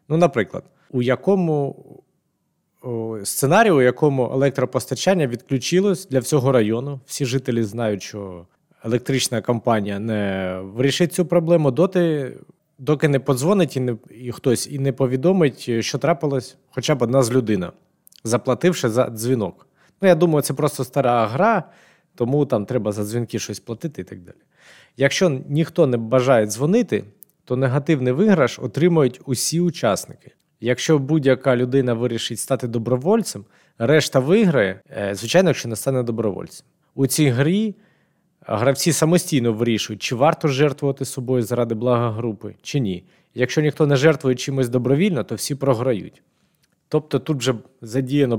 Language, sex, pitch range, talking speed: Ukrainian, male, 120-155 Hz, 140 wpm